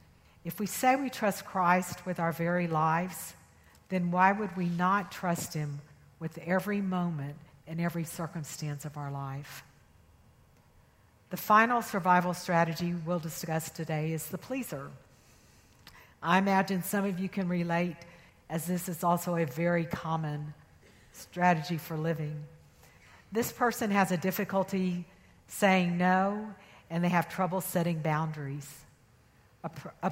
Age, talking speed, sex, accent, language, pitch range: 60-79, 135 wpm, female, American, English, 155-195 Hz